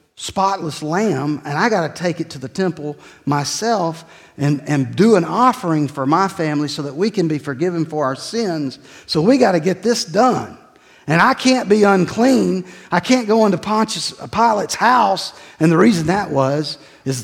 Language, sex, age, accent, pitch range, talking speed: English, male, 50-69, American, 125-180 Hz, 185 wpm